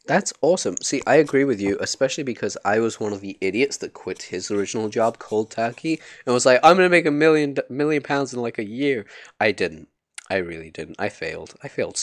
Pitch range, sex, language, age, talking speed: 100-130 Hz, male, English, 20-39, 230 wpm